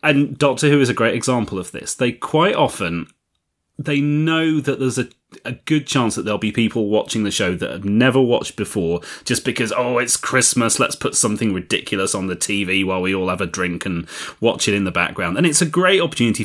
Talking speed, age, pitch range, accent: 225 wpm, 30-49, 100-140 Hz, British